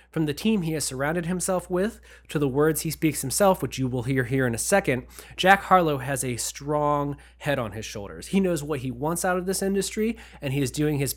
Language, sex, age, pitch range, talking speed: English, male, 20-39, 135-165 Hz, 240 wpm